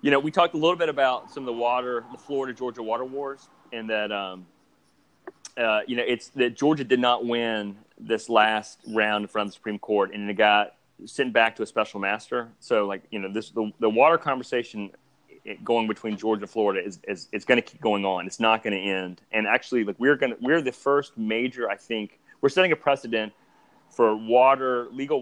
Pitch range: 100-120 Hz